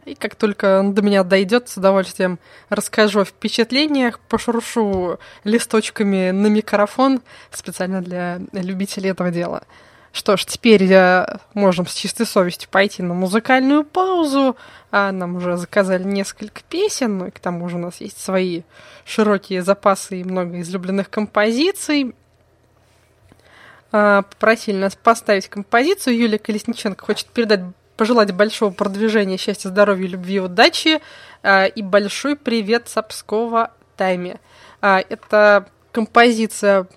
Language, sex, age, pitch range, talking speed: Russian, female, 20-39, 190-230 Hz, 125 wpm